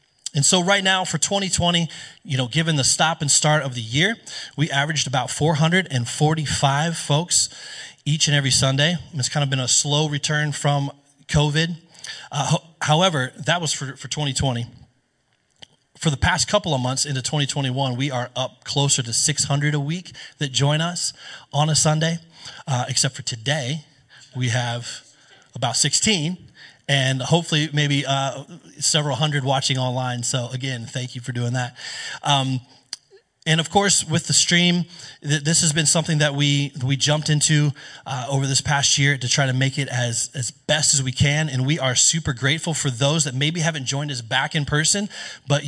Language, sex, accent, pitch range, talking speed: English, male, American, 135-160 Hz, 175 wpm